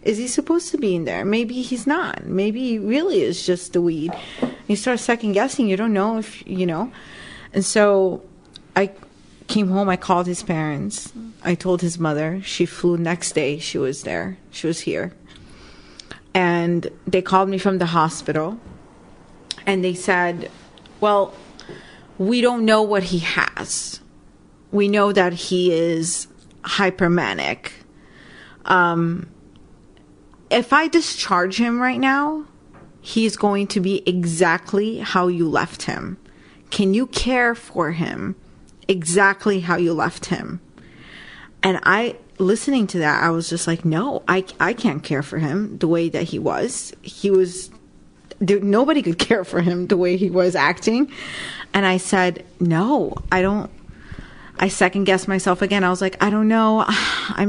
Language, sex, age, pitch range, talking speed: English, female, 30-49, 175-220 Hz, 160 wpm